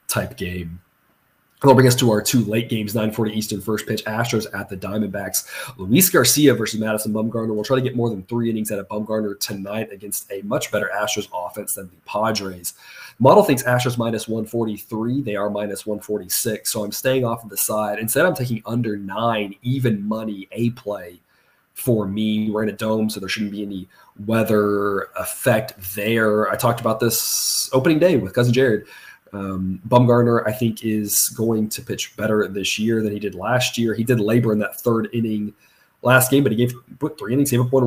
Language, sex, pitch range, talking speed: English, male, 105-120 Hz, 205 wpm